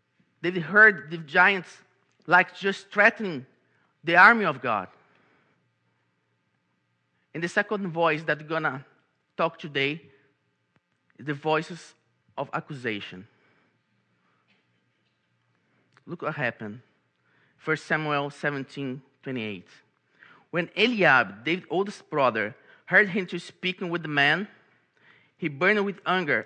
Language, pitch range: English, 150-205 Hz